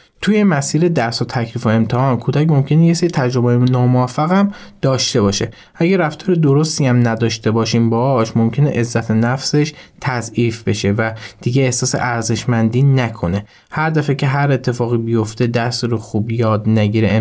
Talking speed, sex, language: 155 wpm, male, Persian